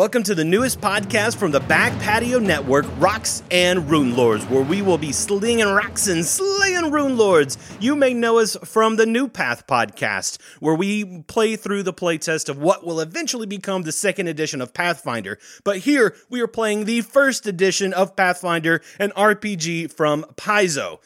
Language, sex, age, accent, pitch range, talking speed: English, male, 30-49, American, 150-210 Hz, 180 wpm